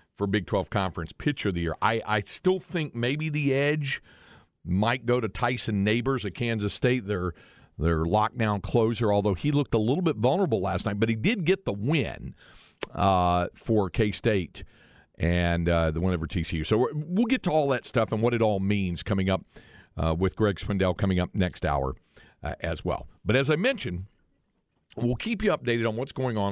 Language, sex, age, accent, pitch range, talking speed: English, male, 50-69, American, 95-120 Hz, 200 wpm